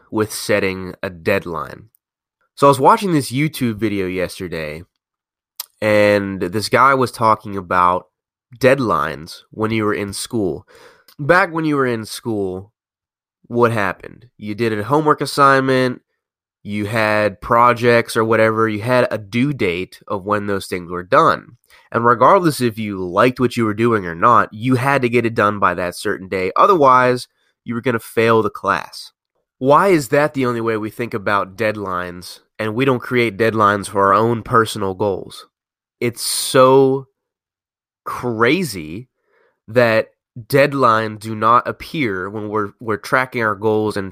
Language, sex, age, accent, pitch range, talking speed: English, male, 20-39, American, 105-125 Hz, 160 wpm